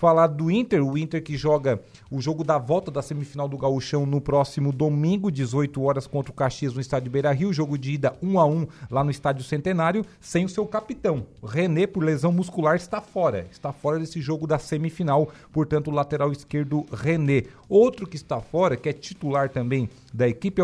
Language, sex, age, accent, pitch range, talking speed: Portuguese, male, 40-59, Brazilian, 145-190 Hz, 200 wpm